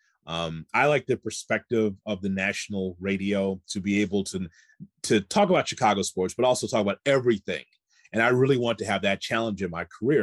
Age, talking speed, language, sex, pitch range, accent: 30-49, 200 wpm, English, male, 95-120 Hz, American